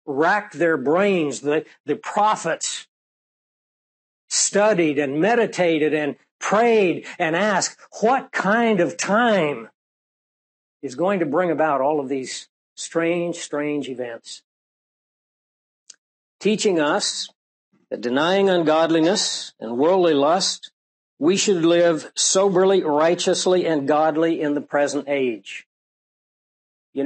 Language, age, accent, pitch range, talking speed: English, 60-79, American, 145-175 Hz, 105 wpm